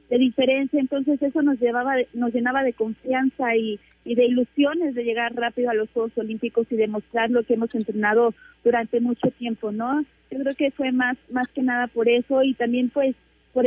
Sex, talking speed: female, 200 wpm